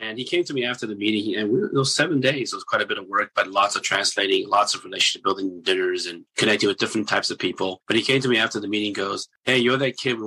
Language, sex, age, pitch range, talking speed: English, male, 30-49, 105-135 Hz, 285 wpm